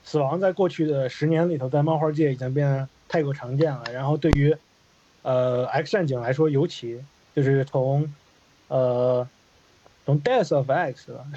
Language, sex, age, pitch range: Chinese, male, 20-39, 130-165 Hz